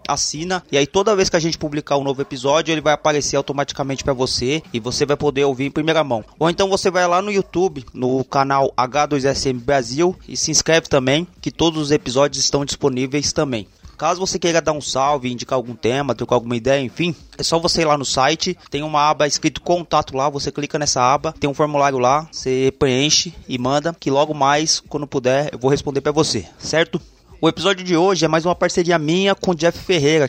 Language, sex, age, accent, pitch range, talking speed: Portuguese, male, 20-39, Brazilian, 130-165 Hz, 220 wpm